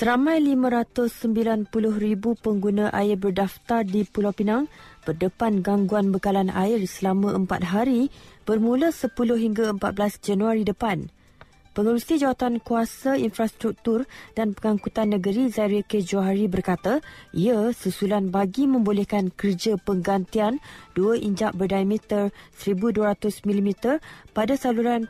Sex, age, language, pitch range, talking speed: female, 30-49, Malay, 200-235 Hz, 105 wpm